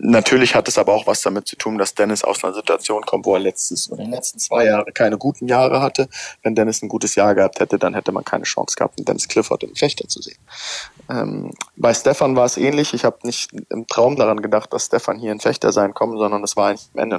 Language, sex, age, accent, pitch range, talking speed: German, male, 20-39, German, 100-120 Hz, 255 wpm